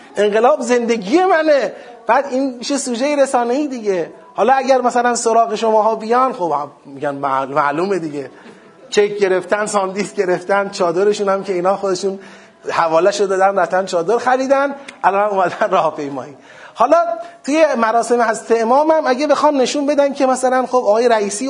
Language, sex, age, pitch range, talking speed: Persian, male, 30-49, 190-260 Hz, 150 wpm